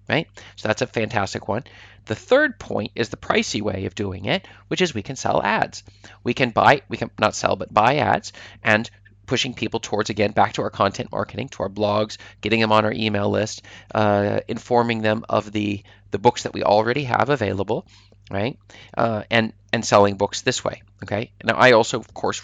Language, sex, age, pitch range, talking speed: English, male, 30-49, 100-115 Hz, 205 wpm